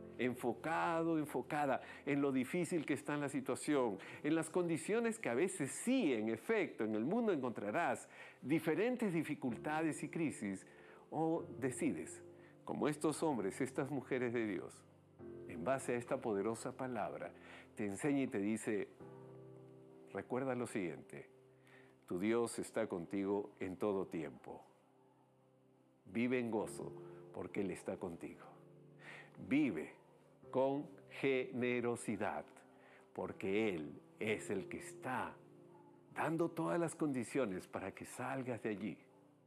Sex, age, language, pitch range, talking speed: male, 50-69, Spanish, 90-145 Hz, 125 wpm